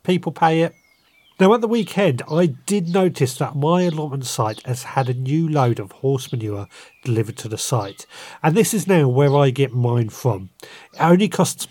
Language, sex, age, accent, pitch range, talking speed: English, male, 40-59, British, 120-150 Hz, 195 wpm